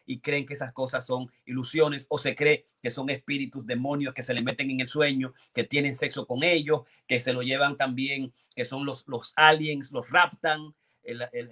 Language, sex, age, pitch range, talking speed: Spanish, male, 40-59, 125-155 Hz, 210 wpm